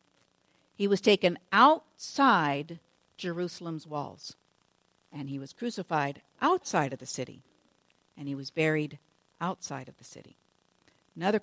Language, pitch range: English, 145-205 Hz